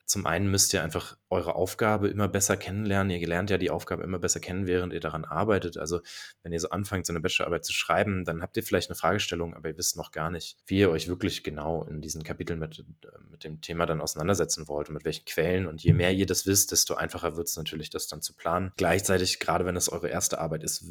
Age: 20-39